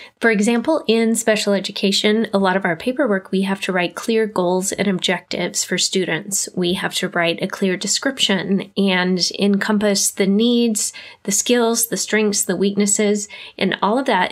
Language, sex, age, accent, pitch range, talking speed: English, female, 20-39, American, 185-220 Hz, 170 wpm